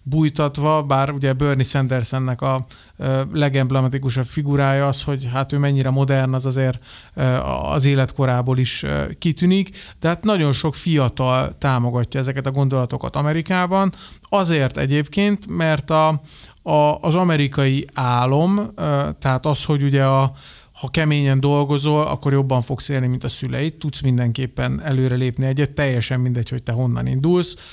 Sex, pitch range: male, 130-155 Hz